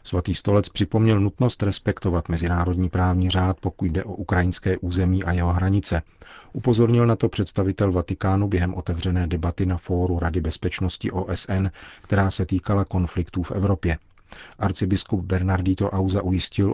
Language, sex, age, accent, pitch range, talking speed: Czech, male, 40-59, native, 90-100 Hz, 140 wpm